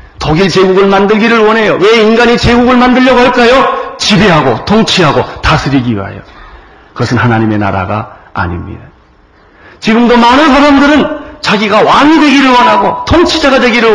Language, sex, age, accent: Korean, male, 40-59, native